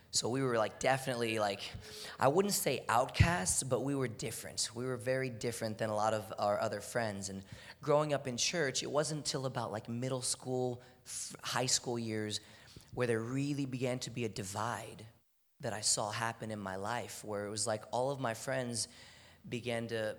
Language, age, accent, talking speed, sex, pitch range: English, 30-49, American, 195 wpm, male, 110-130 Hz